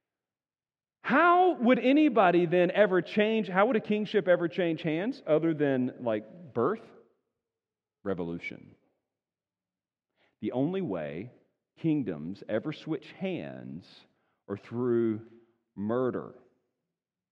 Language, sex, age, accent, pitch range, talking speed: English, male, 40-59, American, 135-195 Hz, 95 wpm